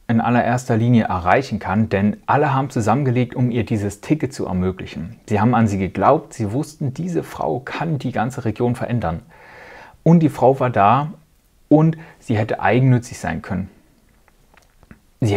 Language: German